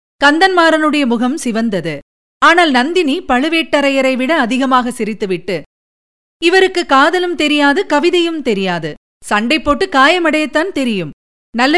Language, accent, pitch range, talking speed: Tamil, native, 230-290 Hz, 95 wpm